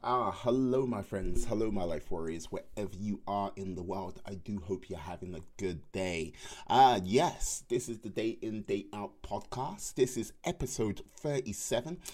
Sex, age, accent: male, 30-49, British